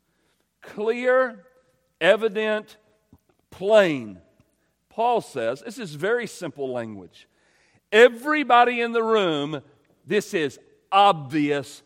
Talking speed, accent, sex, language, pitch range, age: 85 wpm, American, male, English, 165-245 Hz, 50-69